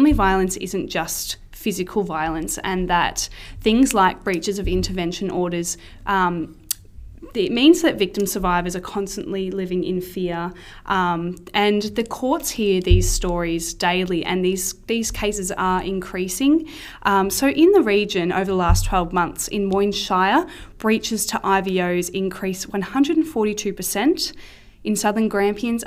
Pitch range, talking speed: 180-210 Hz, 135 wpm